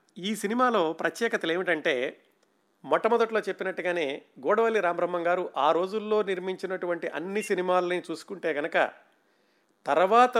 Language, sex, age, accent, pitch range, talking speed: Telugu, male, 50-69, native, 145-190 Hz, 100 wpm